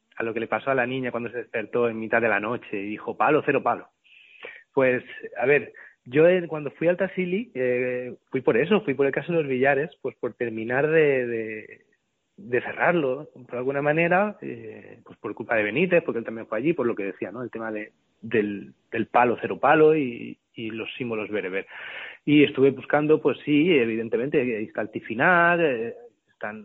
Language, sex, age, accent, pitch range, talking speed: Spanish, male, 30-49, Spanish, 120-170 Hz, 205 wpm